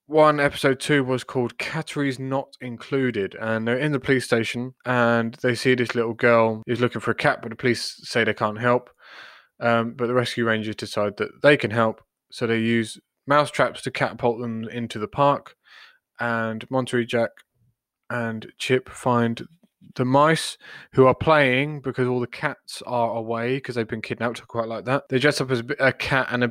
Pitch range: 115-135 Hz